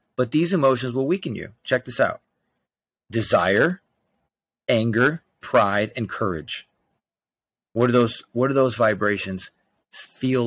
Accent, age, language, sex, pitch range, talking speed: American, 30-49, English, male, 100-125 Hz, 125 wpm